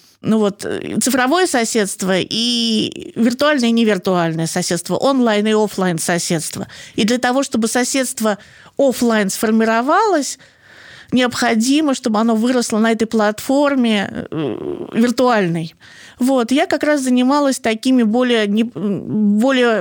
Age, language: 20-39, Russian